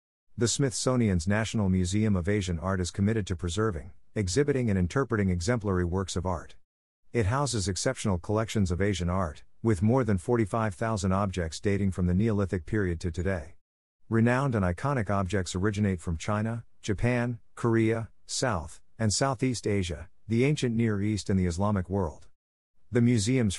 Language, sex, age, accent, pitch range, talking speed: English, male, 50-69, American, 90-115 Hz, 155 wpm